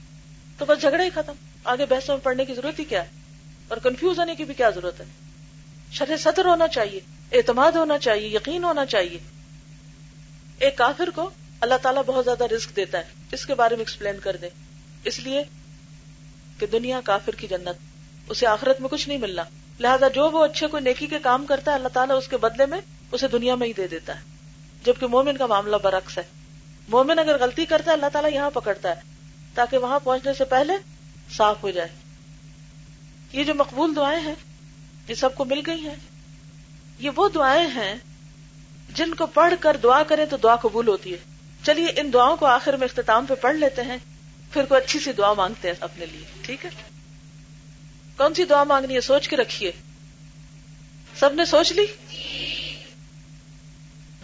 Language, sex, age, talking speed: Urdu, female, 40-59, 185 wpm